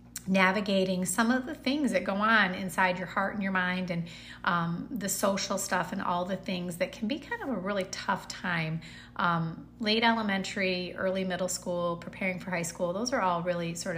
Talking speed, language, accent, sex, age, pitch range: 200 wpm, English, American, female, 30-49, 170-210 Hz